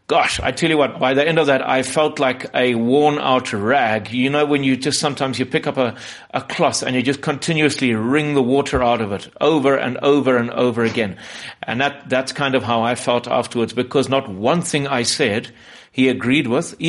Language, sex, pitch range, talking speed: English, male, 120-145 Hz, 220 wpm